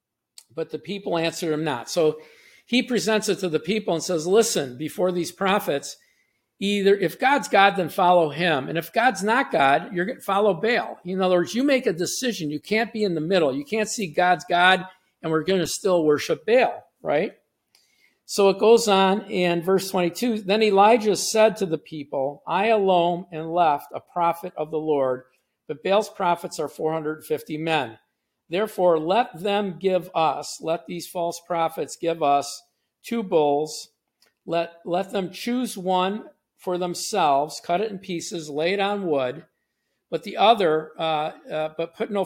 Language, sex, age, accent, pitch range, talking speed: English, male, 50-69, American, 155-200 Hz, 180 wpm